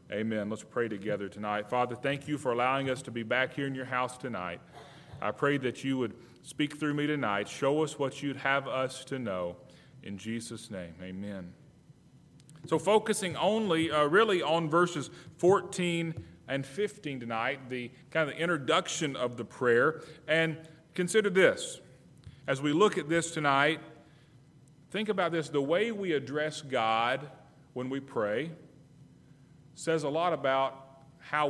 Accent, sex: American, male